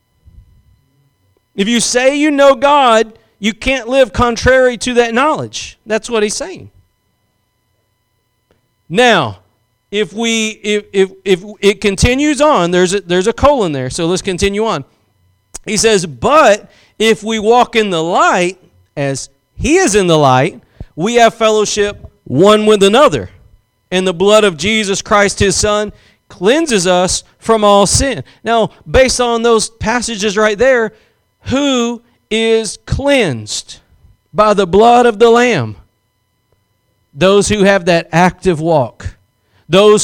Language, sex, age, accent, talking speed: English, male, 40-59, American, 140 wpm